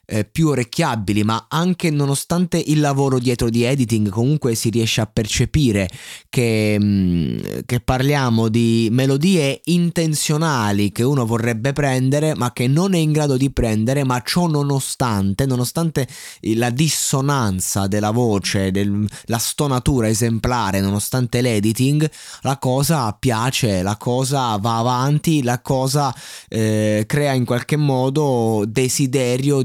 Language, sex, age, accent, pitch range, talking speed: Italian, male, 20-39, native, 105-135 Hz, 125 wpm